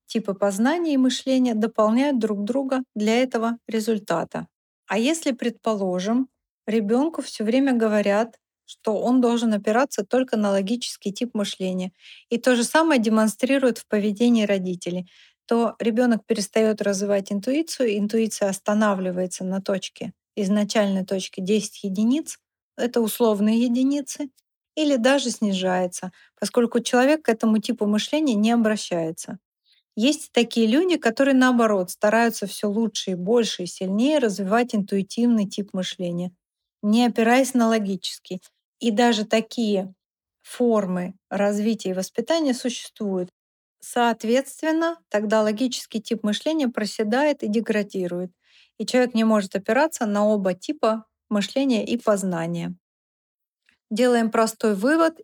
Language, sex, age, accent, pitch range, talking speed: Russian, female, 30-49, native, 205-245 Hz, 120 wpm